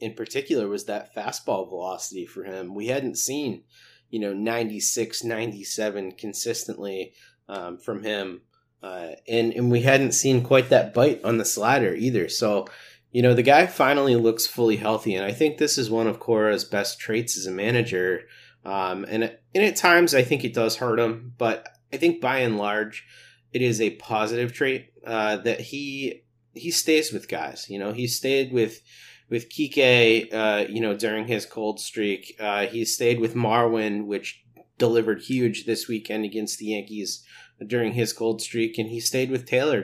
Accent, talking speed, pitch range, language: American, 180 wpm, 110-125 Hz, English